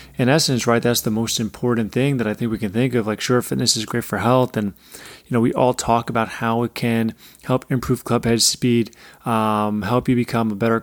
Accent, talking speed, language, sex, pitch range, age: American, 240 wpm, English, male, 115-130 Hz, 30-49